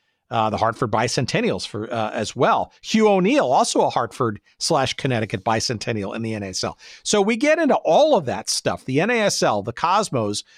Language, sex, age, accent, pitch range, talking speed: English, male, 50-69, American, 125-180 Hz, 175 wpm